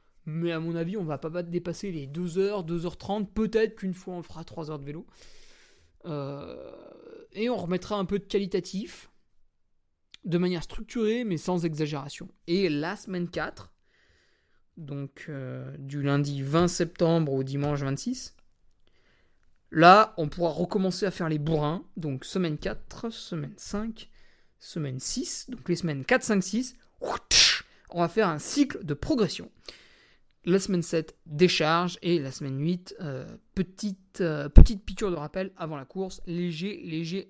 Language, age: French, 20-39